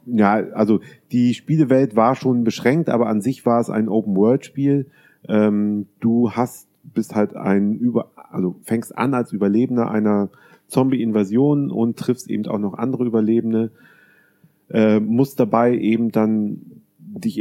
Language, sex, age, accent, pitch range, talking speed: German, male, 30-49, German, 100-125 Hz, 140 wpm